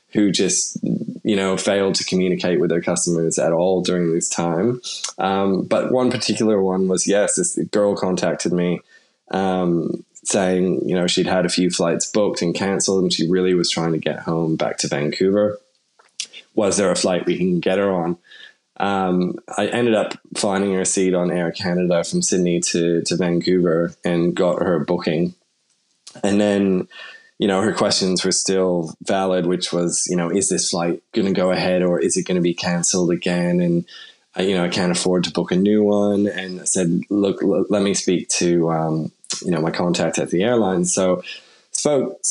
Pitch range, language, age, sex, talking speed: 90-100 Hz, English, 20-39, male, 195 wpm